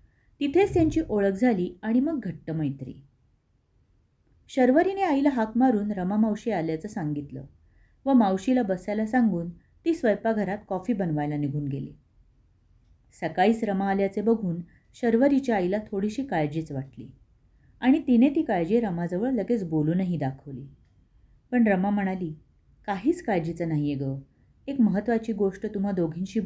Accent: native